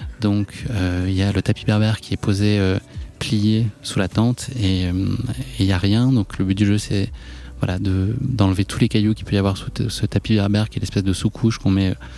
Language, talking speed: French, 225 wpm